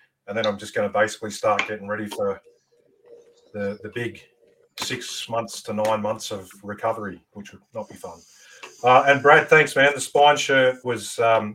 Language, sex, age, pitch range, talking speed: English, male, 40-59, 105-145 Hz, 185 wpm